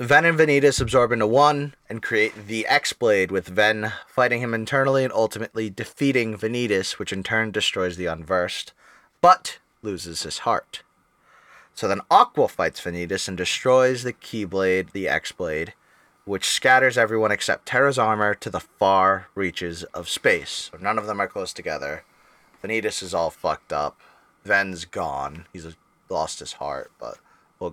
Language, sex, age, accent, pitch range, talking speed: English, male, 20-39, American, 105-135 Hz, 155 wpm